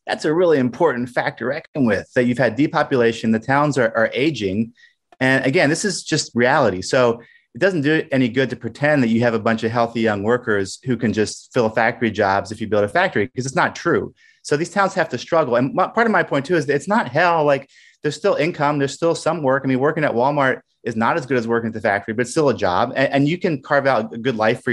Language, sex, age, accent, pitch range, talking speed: English, male, 30-49, American, 115-155 Hz, 270 wpm